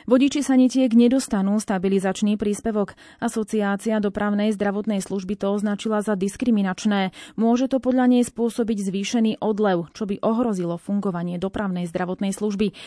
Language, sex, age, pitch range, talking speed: Slovak, female, 30-49, 200-235 Hz, 125 wpm